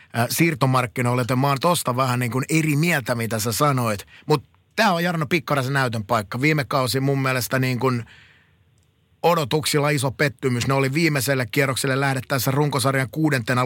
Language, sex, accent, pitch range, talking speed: Finnish, male, native, 115-145 Hz, 160 wpm